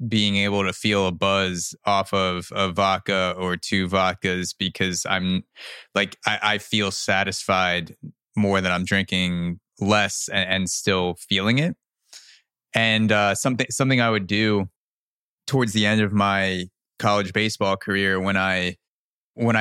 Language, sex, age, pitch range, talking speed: English, male, 20-39, 95-110 Hz, 145 wpm